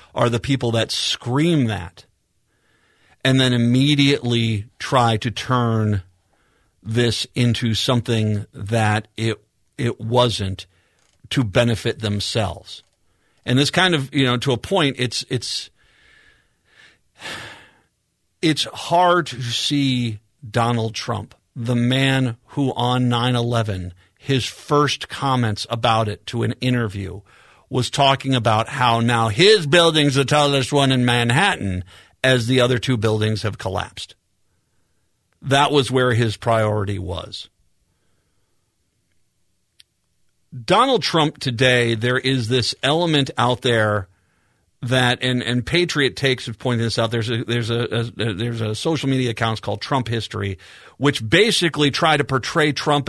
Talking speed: 130 wpm